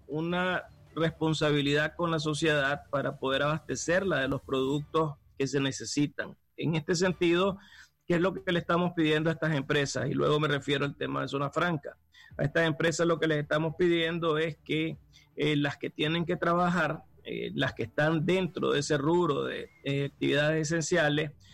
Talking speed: 180 wpm